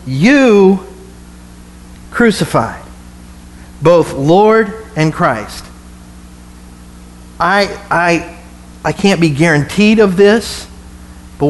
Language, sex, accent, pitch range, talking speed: English, male, American, 150-220 Hz, 80 wpm